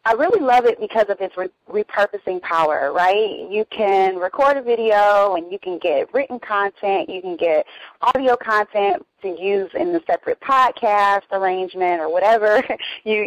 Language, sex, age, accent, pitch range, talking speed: English, female, 30-49, American, 185-260 Hz, 165 wpm